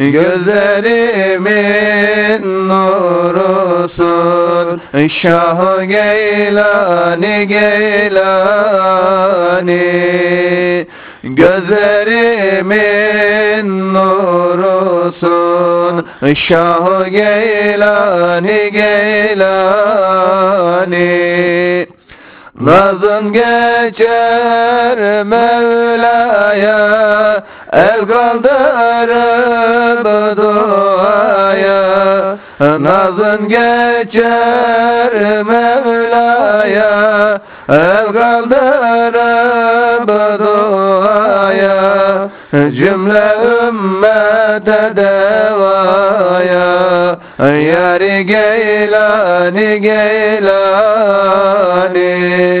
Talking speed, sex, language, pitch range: 30 wpm, male, Turkish, 185-215 Hz